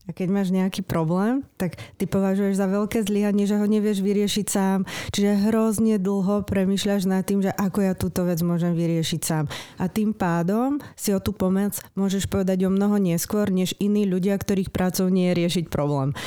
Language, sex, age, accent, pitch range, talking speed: Czech, female, 30-49, native, 160-195 Hz, 190 wpm